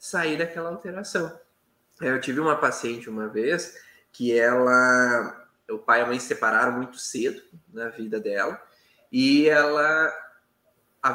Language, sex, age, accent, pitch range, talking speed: Portuguese, male, 20-39, Brazilian, 130-210 Hz, 140 wpm